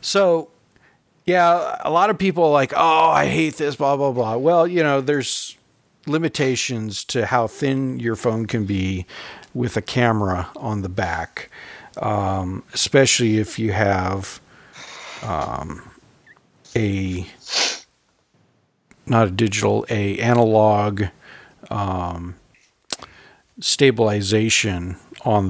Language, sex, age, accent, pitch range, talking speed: English, male, 50-69, American, 100-130 Hz, 115 wpm